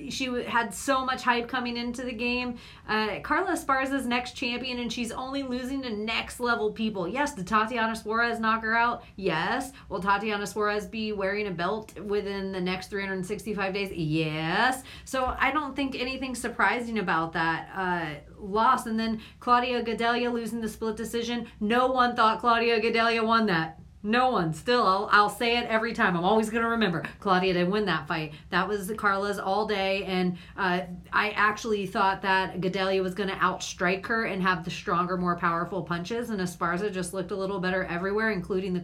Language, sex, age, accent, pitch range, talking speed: English, female, 40-59, American, 190-235 Hz, 185 wpm